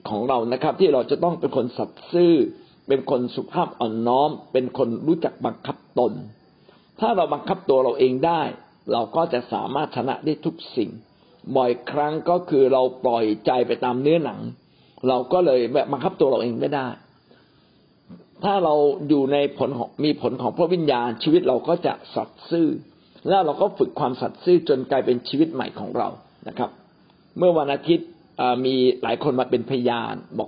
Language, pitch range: Thai, 130-170 Hz